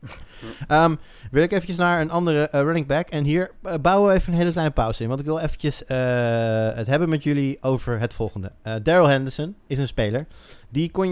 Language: Dutch